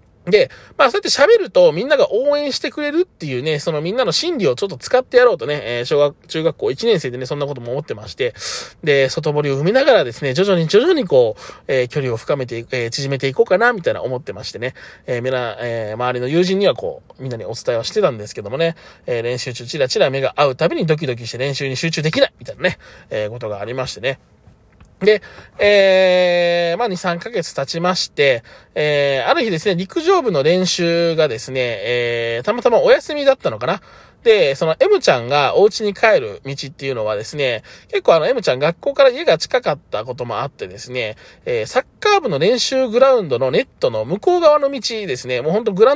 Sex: male